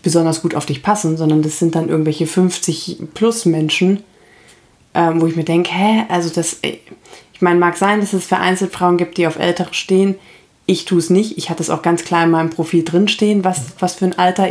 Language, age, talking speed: German, 20-39, 225 wpm